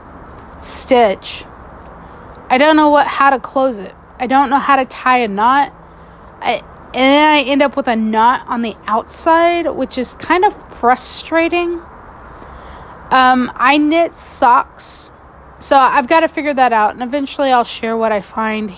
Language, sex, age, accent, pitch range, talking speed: English, female, 30-49, American, 230-275 Hz, 165 wpm